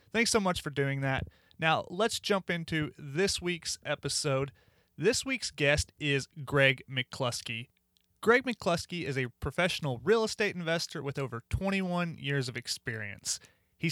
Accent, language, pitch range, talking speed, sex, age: American, English, 130-175 Hz, 145 wpm, male, 30-49